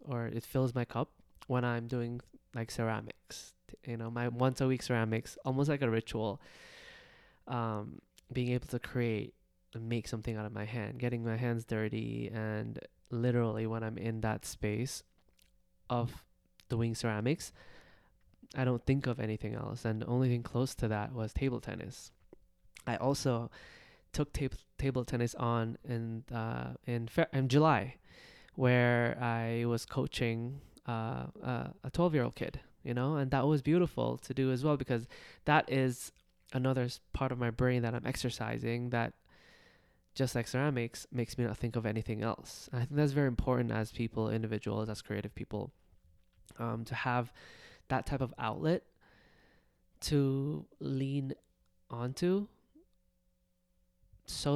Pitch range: 110-130 Hz